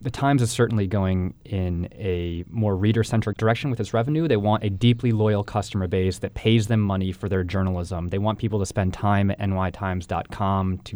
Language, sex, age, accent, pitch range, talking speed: English, male, 20-39, American, 95-115 Hz, 195 wpm